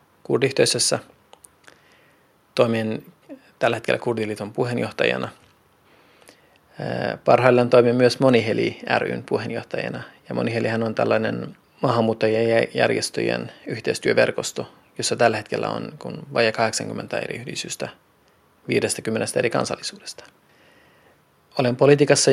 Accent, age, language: native, 30-49, Finnish